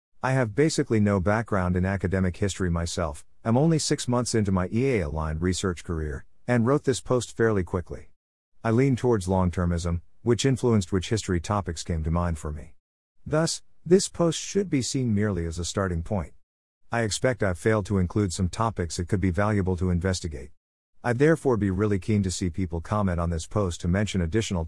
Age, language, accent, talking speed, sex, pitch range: 50-69, English, American, 190 wpm, male, 85-115 Hz